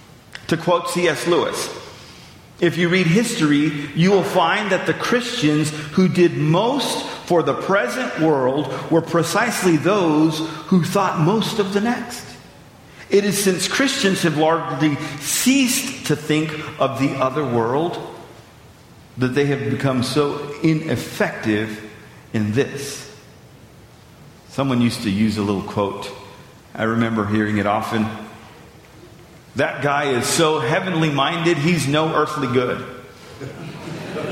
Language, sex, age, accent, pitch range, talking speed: English, male, 50-69, American, 140-185 Hz, 130 wpm